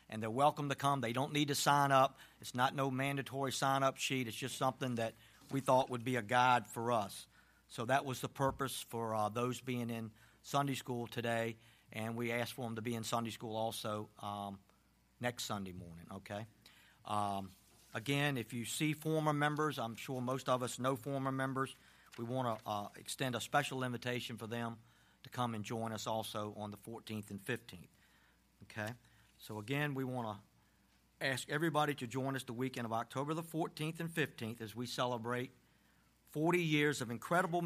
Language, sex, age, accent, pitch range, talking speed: English, male, 50-69, American, 115-140 Hz, 190 wpm